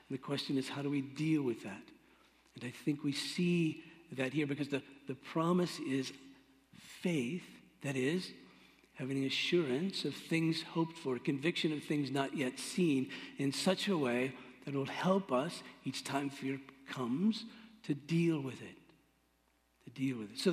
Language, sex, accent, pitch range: English, male, American, 135-180 Hz